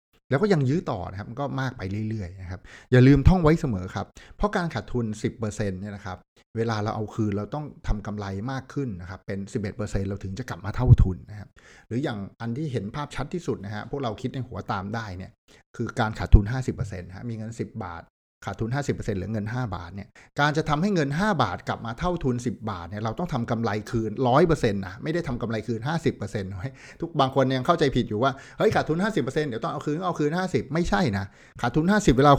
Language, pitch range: Thai, 105-140 Hz